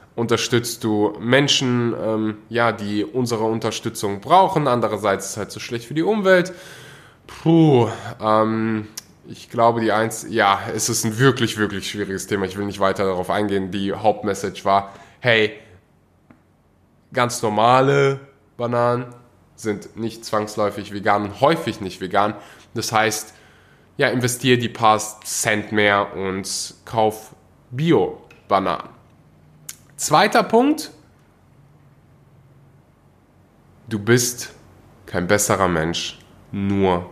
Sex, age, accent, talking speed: male, 10-29, German, 115 wpm